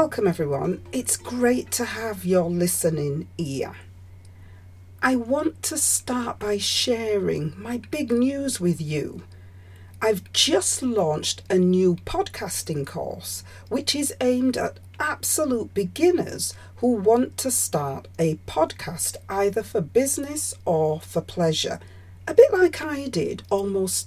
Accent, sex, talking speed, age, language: British, female, 125 wpm, 40-59, English